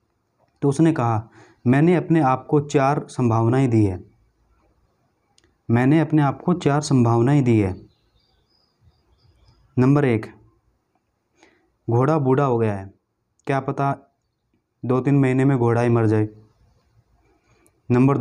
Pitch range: 110-145 Hz